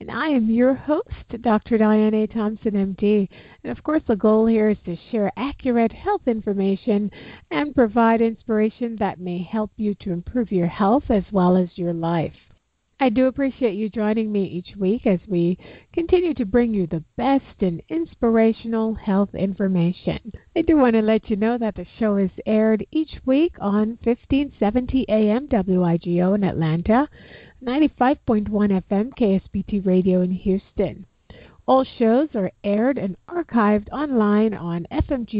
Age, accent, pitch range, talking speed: 50-69, American, 195-250 Hz, 160 wpm